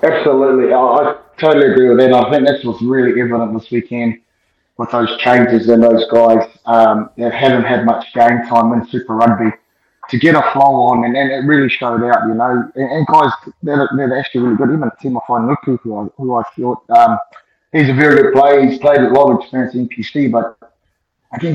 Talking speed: 210 wpm